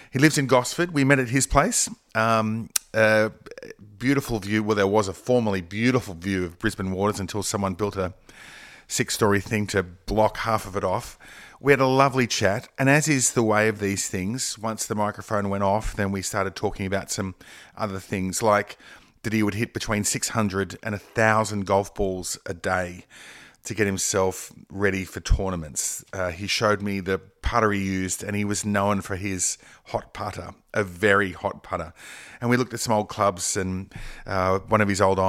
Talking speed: 190 wpm